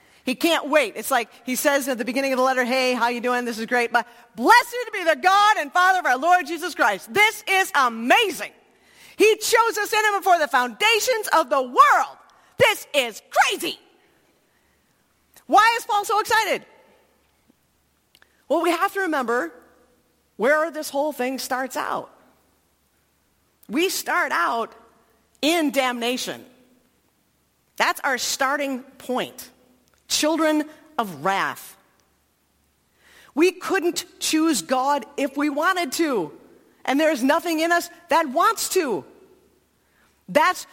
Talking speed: 140 wpm